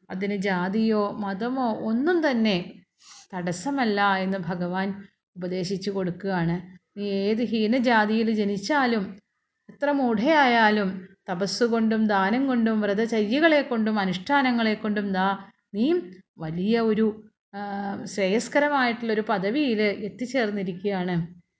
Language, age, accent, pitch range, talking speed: Malayalam, 30-49, native, 195-240 Hz, 85 wpm